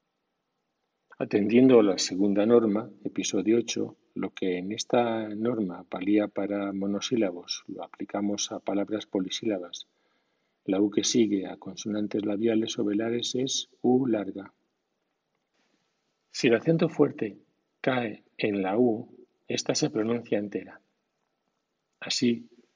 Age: 40-59